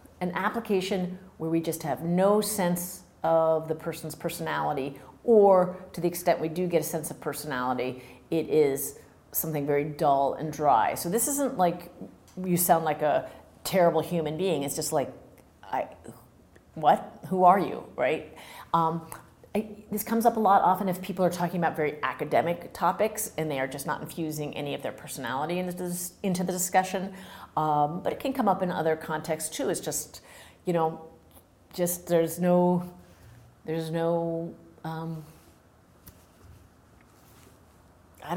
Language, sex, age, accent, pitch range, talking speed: English, female, 40-59, American, 155-185 Hz, 155 wpm